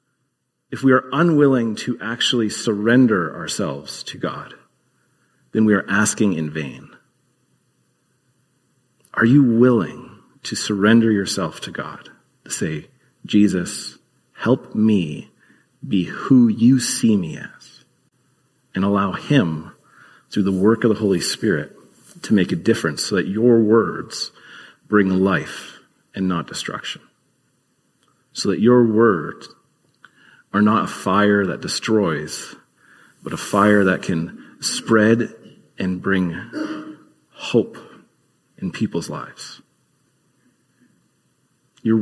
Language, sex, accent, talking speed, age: English, male, American, 115 wpm, 40-59